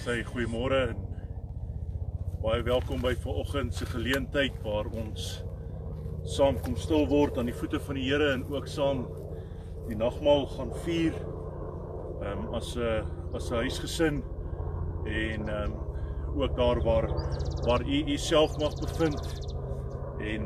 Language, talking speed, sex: English, 120 wpm, male